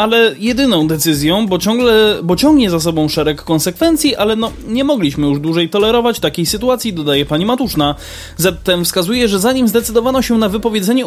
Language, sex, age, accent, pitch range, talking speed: Polish, male, 20-39, native, 175-245 Hz, 170 wpm